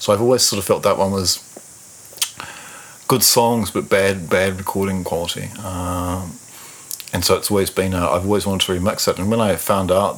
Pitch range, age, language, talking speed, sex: 85-100 Hz, 40-59, English, 200 wpm, male